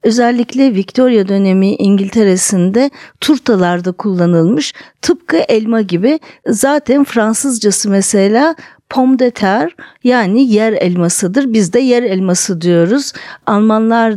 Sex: female